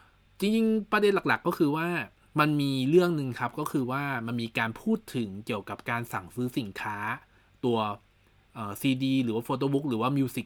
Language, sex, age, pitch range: Thai, male, 20-39, 110-145 Hz